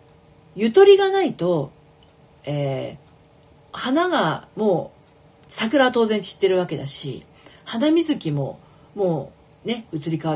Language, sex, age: Japanese, female, 40-59